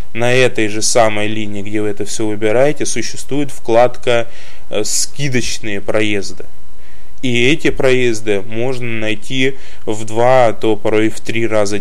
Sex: male